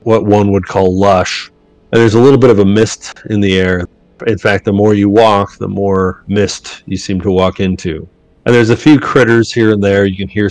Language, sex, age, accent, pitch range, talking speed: English, male, 30-49, American, 90-105 Hz, 235 wpm